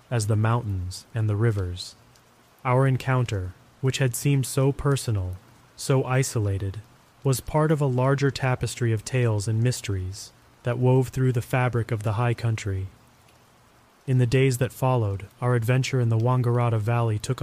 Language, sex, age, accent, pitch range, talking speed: English, male, 30-49, American, 110-130 Hz, 160 wpm